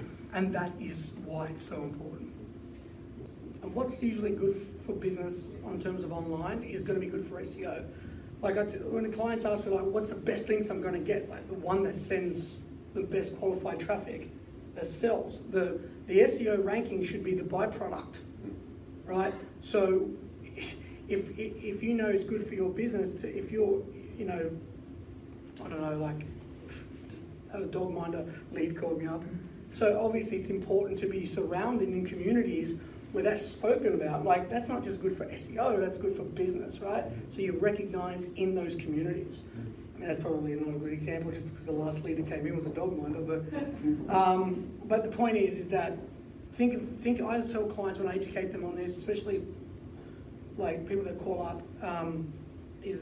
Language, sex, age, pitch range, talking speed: English, male, 30-49, 165-205 Hz, 185 wpm